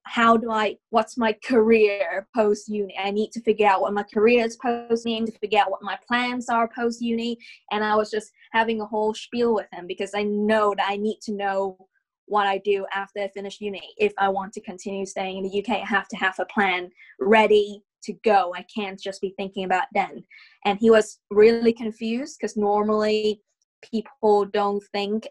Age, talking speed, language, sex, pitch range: 20-39, 200 wpm, English, female, 195-220 Hz